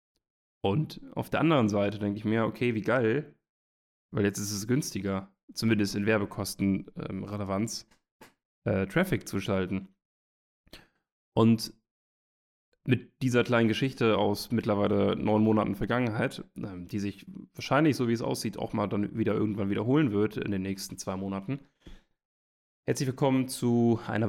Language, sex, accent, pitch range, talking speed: German, male, German, 100-120 Hz, 145 wpm